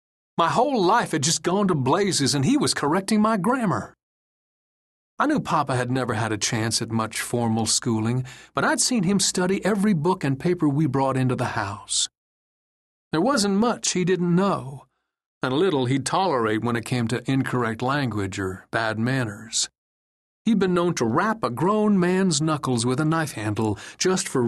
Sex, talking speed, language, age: male, 180 wpm, English, 40-59